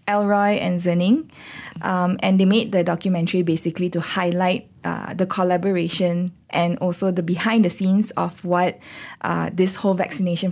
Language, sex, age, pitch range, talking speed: English, female, 20-39, 170-195 Hz, 150 wpm